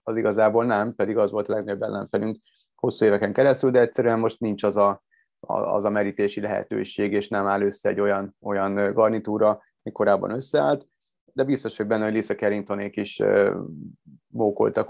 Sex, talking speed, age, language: male, 165 wpm, 30-49, Hungarian